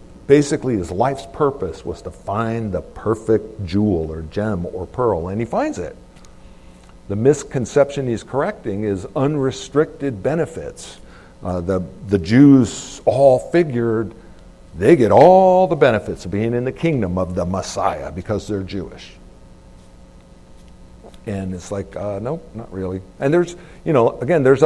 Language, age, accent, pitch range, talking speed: English, 50-69, American, 90-115 Hz, 150 wpm